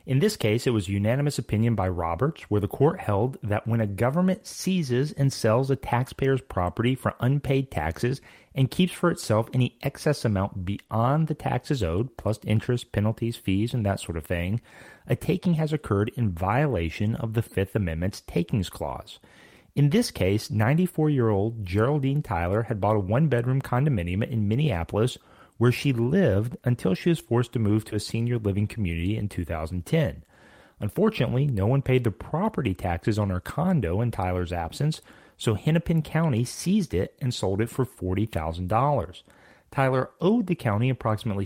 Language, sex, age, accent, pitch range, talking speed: English, male, 30-49, American, 100-135 Hz, 165 wpm